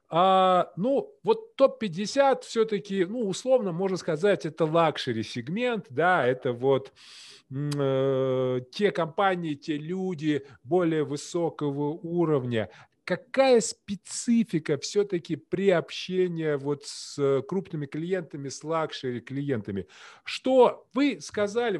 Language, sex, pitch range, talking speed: Russian, male, 150-200 Hz, 95 wpm